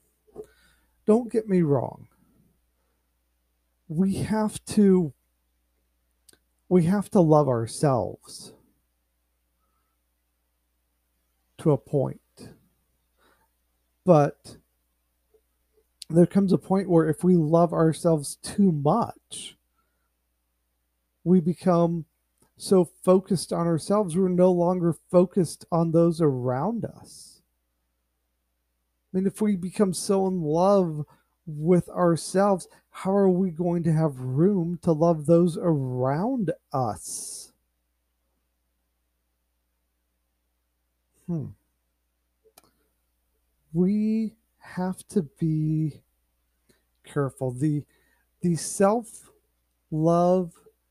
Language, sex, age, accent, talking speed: English, male, 40-59, American, 85 wpm